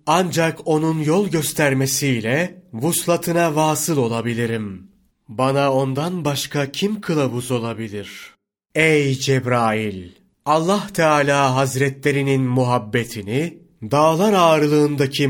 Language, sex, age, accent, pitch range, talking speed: Turkish, male, 30-49, native, 130-155 Hz, 80 wpm